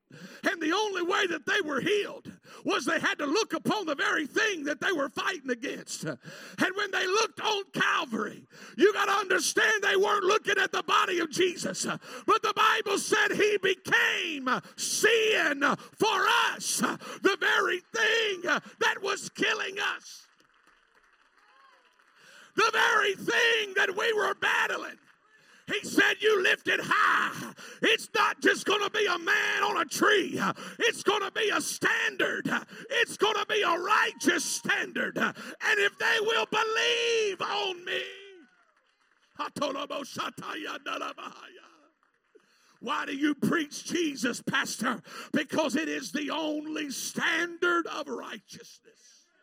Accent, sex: American, male